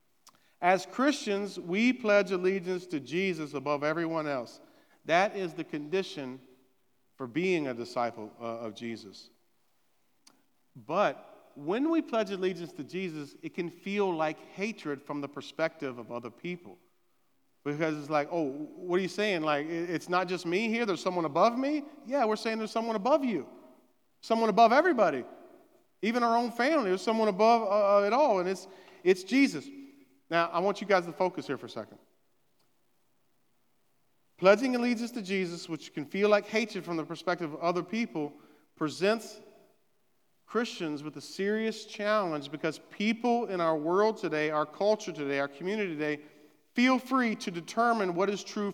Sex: male